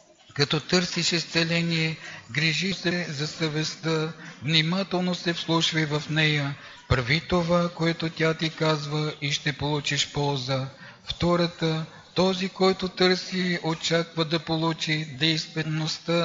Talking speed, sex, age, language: 110 wpm, male, 50-69, Bulgarian